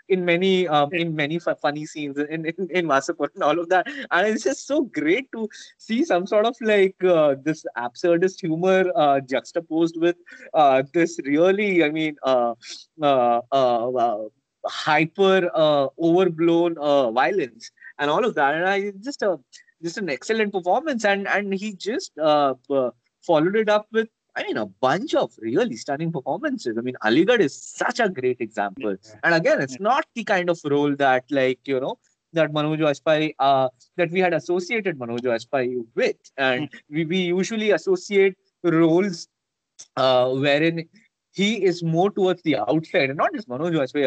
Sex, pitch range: male, 140-190 Hz